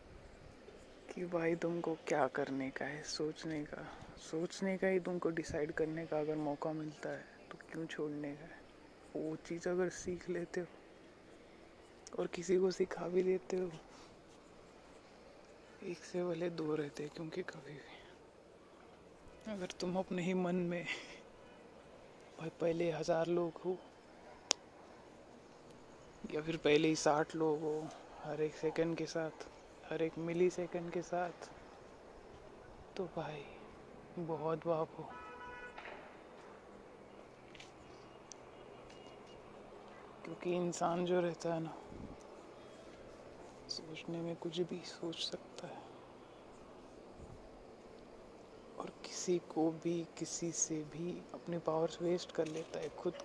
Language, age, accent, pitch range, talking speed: Marathi, 20-39, native, 160-180 Hz, 95 wpm